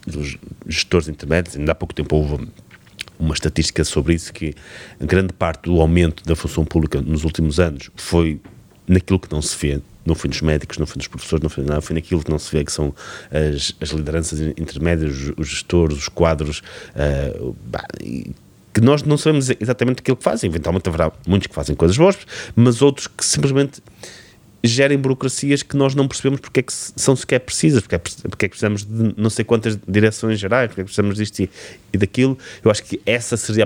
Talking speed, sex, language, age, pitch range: 205 wpm, male, Portuguese, 30-49, 80-105 Hz